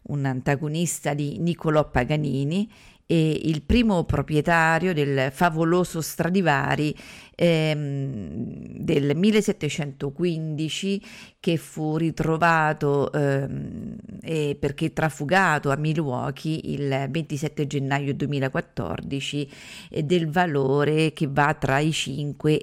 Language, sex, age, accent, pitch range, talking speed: Italian, female, 40-59, native, 145-180 Hz, 95 wpm